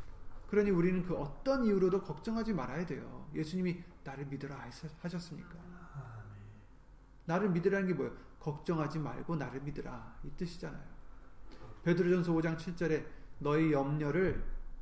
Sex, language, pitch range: male, Korean, 135-185 Hz